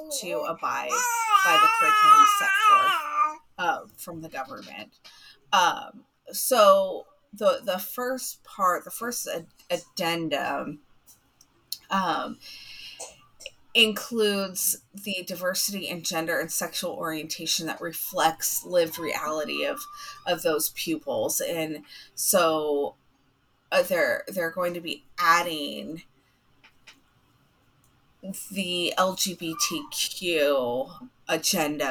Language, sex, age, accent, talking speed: English, female, 30-49, American, 90 wpm